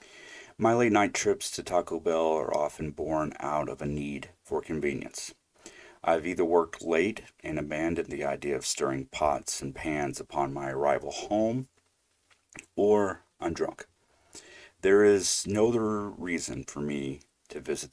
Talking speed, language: 145 wpm, English